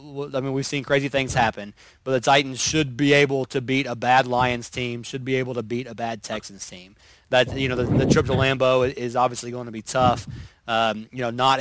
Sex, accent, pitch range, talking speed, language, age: male, American, 120-135 Hz, 240 wpm, English, 30-49